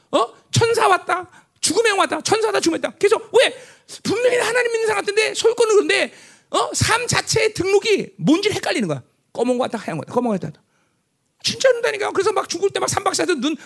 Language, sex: Korean, male